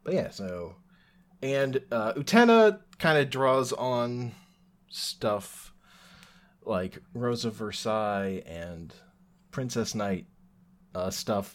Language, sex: English, male